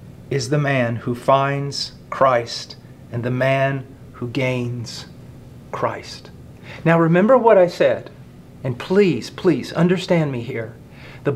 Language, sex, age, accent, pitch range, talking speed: English, male, 40-59, American, 135-180 Hz, 125 wpm